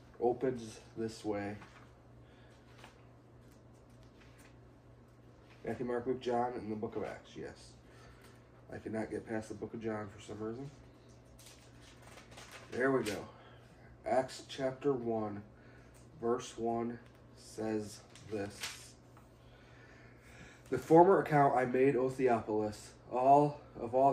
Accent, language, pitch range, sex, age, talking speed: American, English, 110-130 Hz, male, 30-49, 110 wpm